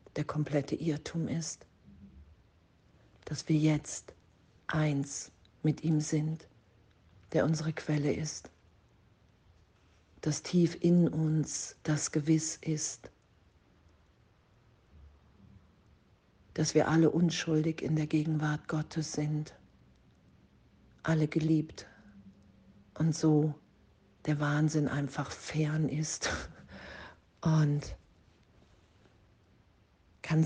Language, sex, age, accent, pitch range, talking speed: German, female, 50-69, German, 100-160 Hz, 85 wpm